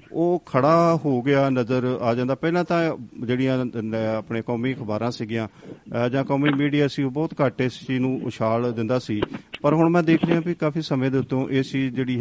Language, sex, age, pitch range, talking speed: Punjabi, male, 40-59, 115-145 Hz, 190 wpm